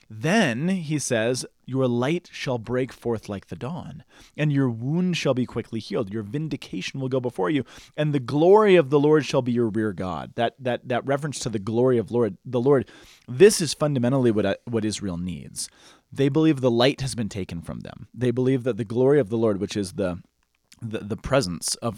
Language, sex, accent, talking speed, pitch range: English, male, American, 210 wpm, 110-145 Hz